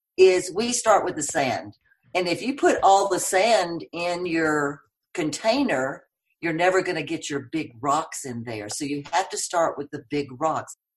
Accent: American